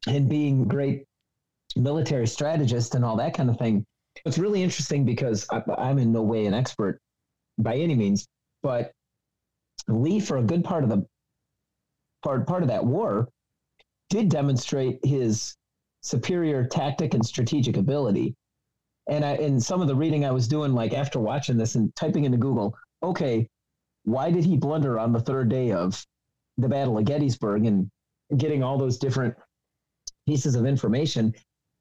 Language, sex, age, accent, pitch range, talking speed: English, male, 40-59, American, 120-150 Hz, 160 wpm